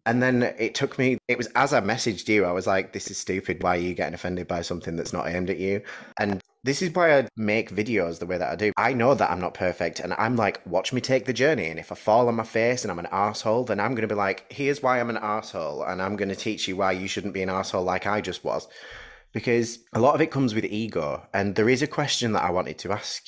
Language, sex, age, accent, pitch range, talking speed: English, male, 30-49, British, 90-115 Hz, 285 wpm